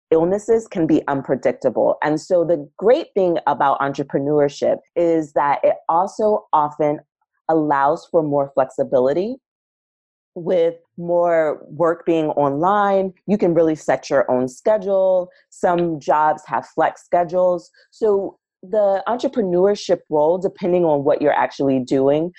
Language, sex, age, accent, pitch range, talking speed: English, female, 30-49, American, 145-185 Hz, 125 wpm